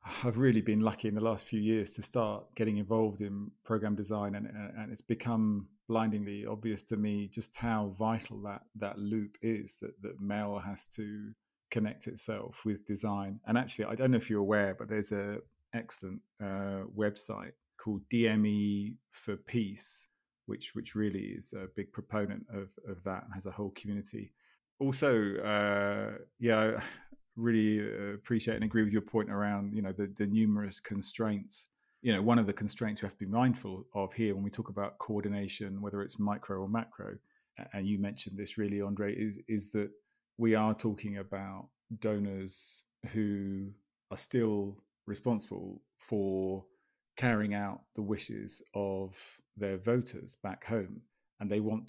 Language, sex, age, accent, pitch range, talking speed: English, male, 30-49, British, 100-110 Hz, 165 wpm